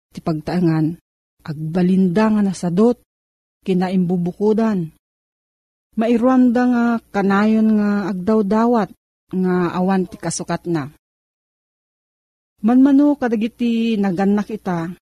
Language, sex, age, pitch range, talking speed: Filipino, female, 40-59, 175-220 Hz, 80 wpm